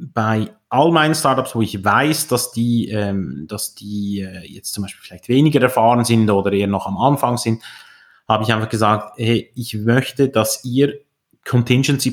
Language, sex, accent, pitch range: German, male, Austrian, 110-140 Hz